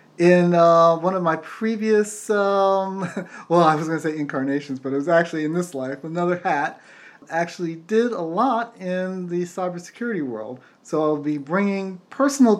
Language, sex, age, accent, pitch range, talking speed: English, male, 30-49, American, 150-180 Hz, 170 wpm